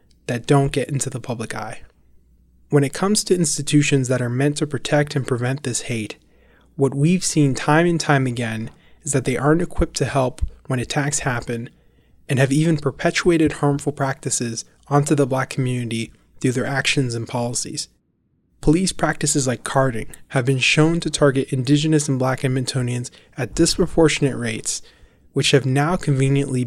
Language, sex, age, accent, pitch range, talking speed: English, male, 20-39, American, 125-150 Hz, 165 wpm